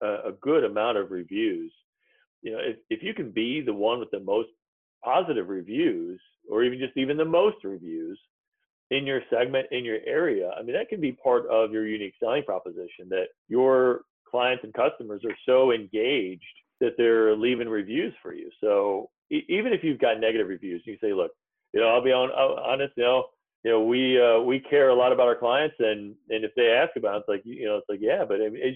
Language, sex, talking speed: English, male, 215 wpm